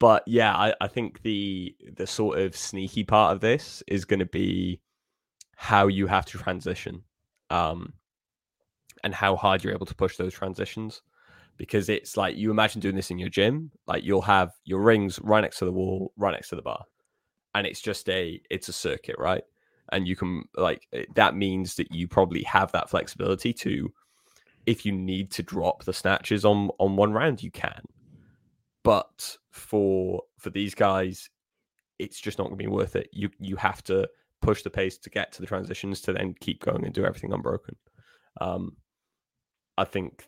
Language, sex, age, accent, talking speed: English, male, 10-29, British, 190 wpm